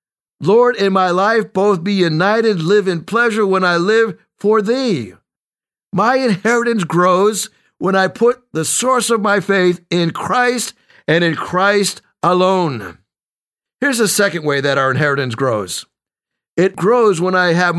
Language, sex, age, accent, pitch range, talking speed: English, male, 60-79, American, 170-215 Hz, 150 wpm